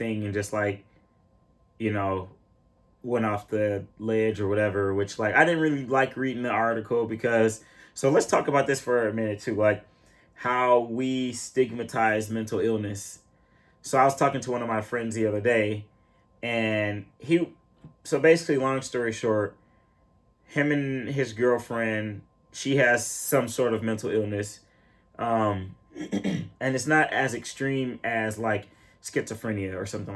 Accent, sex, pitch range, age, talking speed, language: American, male, 105-130 Hz, 20-39, 155 wpm, English